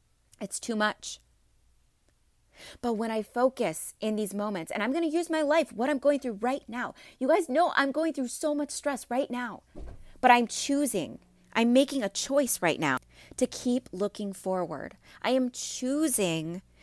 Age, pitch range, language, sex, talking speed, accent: 30-49, 185-255 Hz, English, female, 175 wpm, American